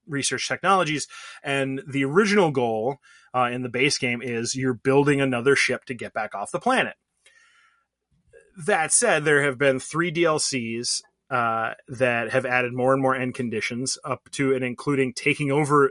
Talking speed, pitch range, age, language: 165 wpm, 125-150 Hz, 30-49, English